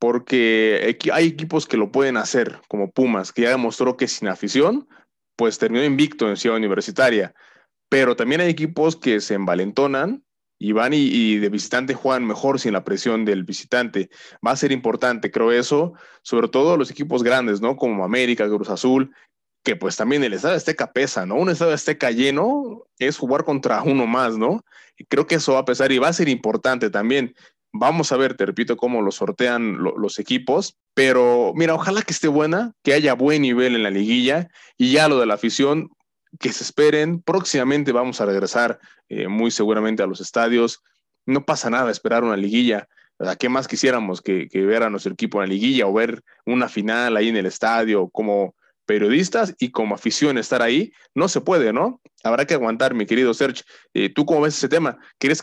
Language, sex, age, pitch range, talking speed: Spanish, male, 30-49, 115-150 Hz, 195 wpm